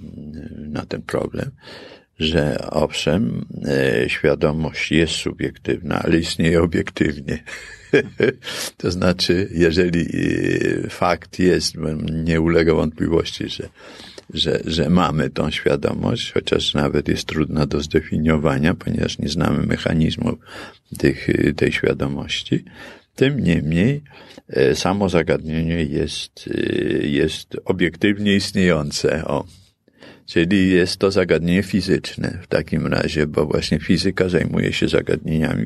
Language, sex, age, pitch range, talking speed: Polish, male, 50-69, 75-90 Hz, 110 wpm